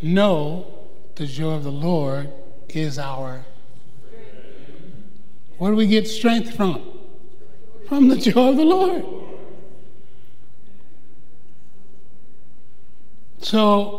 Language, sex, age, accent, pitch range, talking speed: English, male, 60-79, American, 145-215 Hz, 90 wpm